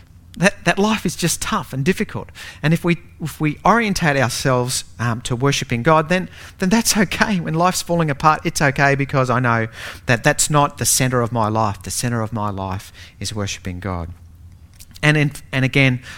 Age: 40-59